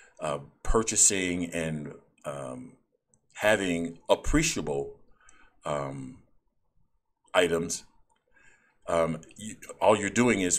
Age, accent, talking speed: 50-69, American, 75 wpm